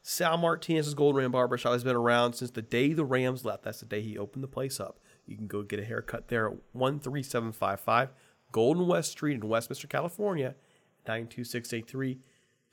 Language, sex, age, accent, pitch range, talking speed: English, male, 40-59, American, 115-140 Hz, 180 wpm